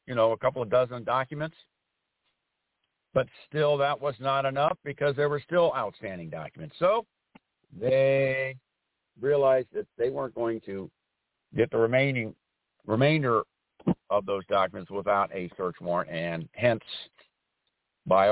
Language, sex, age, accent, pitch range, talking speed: English, male, 60-79, American, 110-135 Hz, 135 wpm